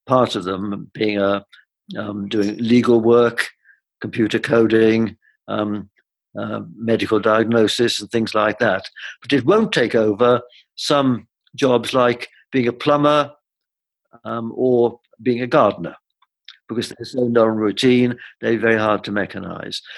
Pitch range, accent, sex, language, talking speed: 110-130 Hz, British, male, English, 135 wpm